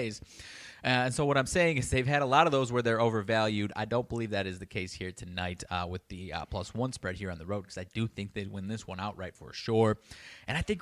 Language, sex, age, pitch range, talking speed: English, male, 20-39, 100-135 Hz, 270 wpm